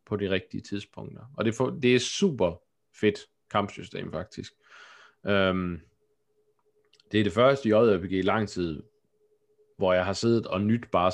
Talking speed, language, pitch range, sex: 150 wpm, Danish, 100-135 Hz, male